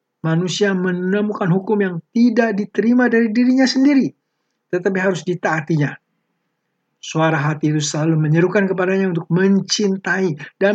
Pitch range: 160-205 Hz